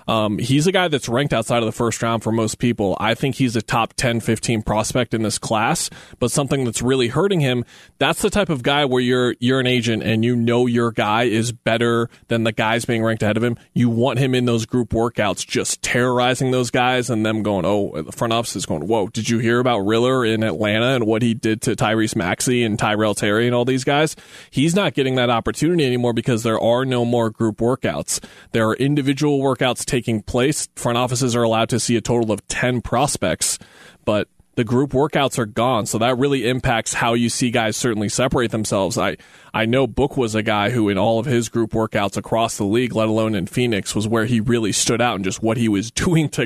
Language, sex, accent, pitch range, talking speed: English, male, American, 110-130 Hz, 230 wpm